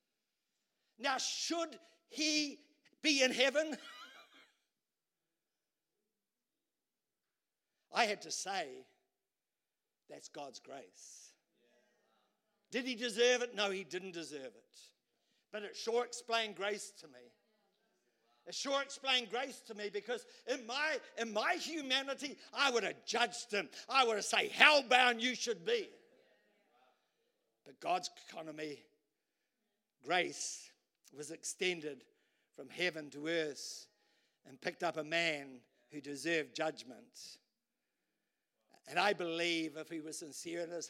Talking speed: 120 wpm